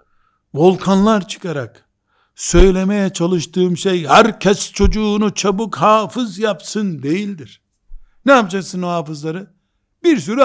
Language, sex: Turkish, male